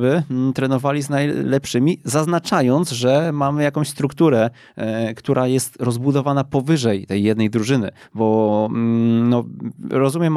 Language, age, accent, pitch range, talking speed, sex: Polish, 20-39, native, 110-135 Hz, 120 wpm, male